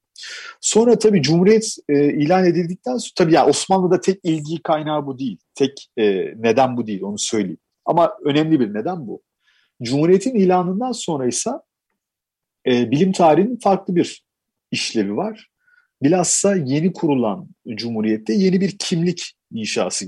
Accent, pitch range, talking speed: native, 110-185 Hz, 135 wpm